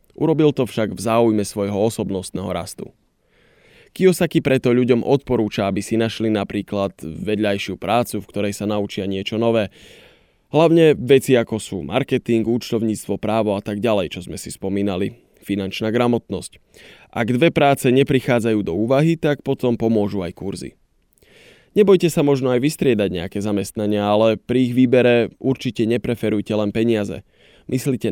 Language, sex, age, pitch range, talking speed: Slovak, male, 20-39, 105-130 Hz, 145 wpm